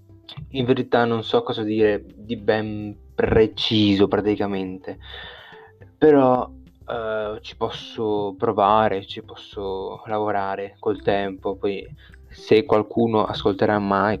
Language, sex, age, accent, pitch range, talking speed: Italian, male, 20-39, native, 95-115 Hz, 105 wpm